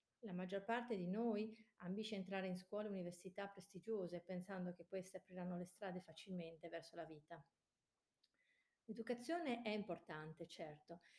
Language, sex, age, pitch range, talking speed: Italian, female, 40-59, 175-220 Hz, 140 wpm